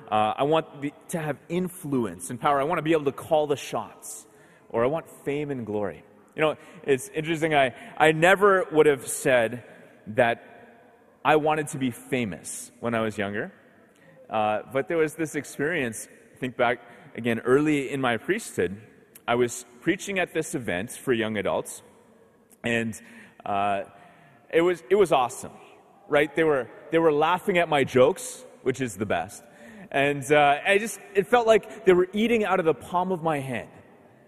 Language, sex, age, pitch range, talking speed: English, male, 30-49, 130-170 Hz, 180 wpm